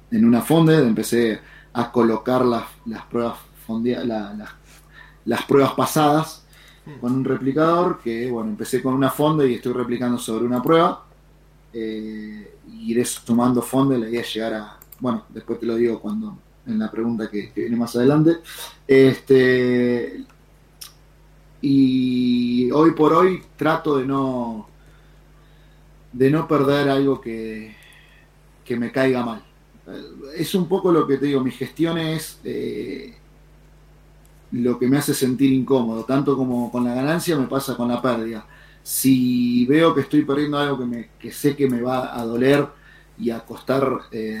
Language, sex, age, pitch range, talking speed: Spanish, male, 30-49, 115-140 Hz, 155 wpm